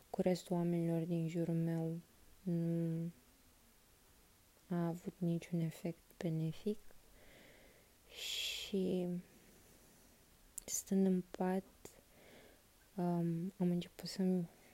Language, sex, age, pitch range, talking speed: Romanian, female, 20-39, 170-195 Hz, 75 wpm